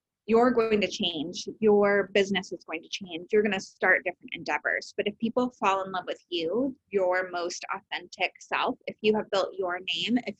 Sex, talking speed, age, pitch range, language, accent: female, 200 wpm, 20-39, 180-220 Hz, English, American